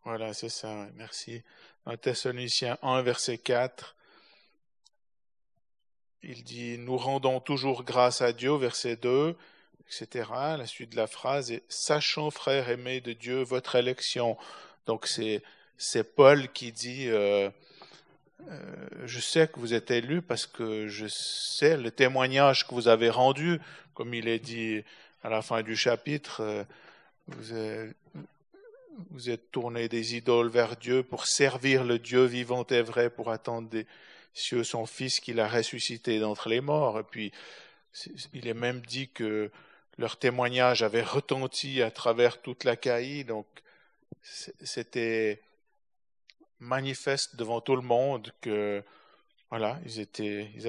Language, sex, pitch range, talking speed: French, male, 115-130 Hz, 155 wpm